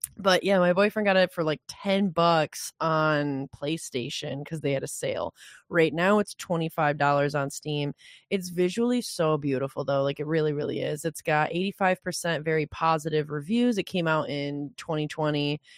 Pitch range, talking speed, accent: 145-170 Hz, 165 wpm, American